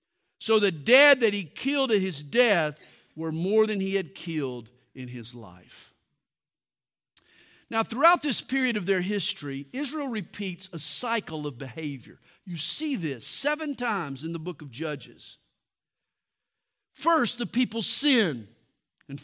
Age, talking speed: 50-69, 145 wpm